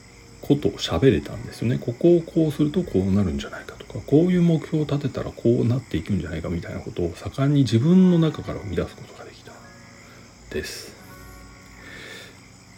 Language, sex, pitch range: Japanese, male, 95-135 Hz